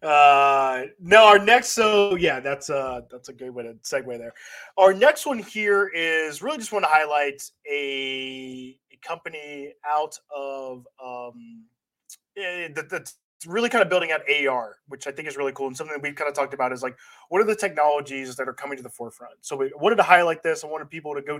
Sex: male